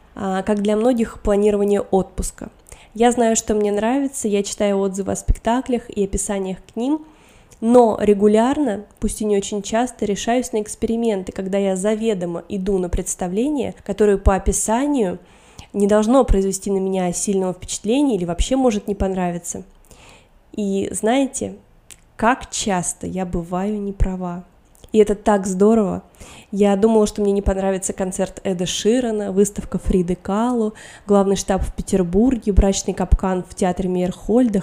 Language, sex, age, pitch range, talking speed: Russian, female, 20-39, 190-220 Hz, 140 wpm